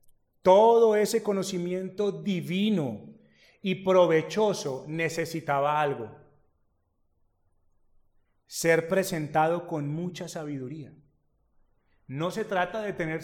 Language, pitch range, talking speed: Spanish, 145-195 Hz, 80 wpm